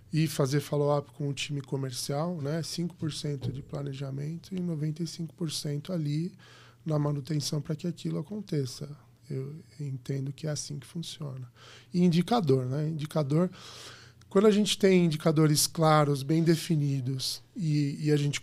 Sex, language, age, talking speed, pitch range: male, Portuguese, 10-29, 140 wpm, 135-170 Hz